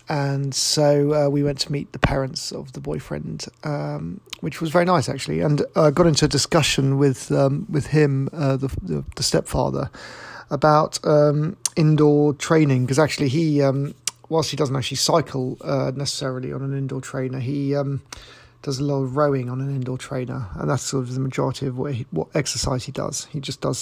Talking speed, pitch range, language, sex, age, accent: 200 wpm, 130-150 Hz, English, male, 40-59, British